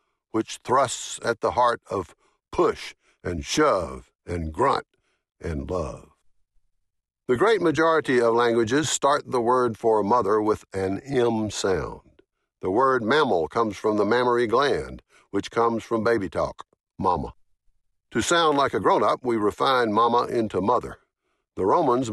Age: 60-79